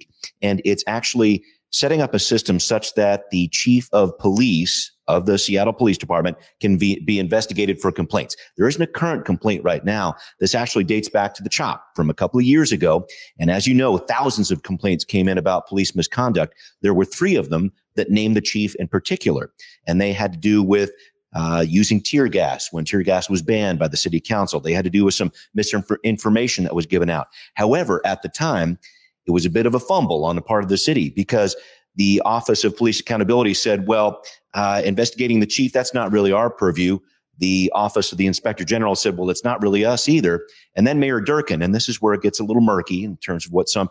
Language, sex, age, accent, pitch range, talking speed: English, male, 30-49, American, 95-115 Hz, 220 wpm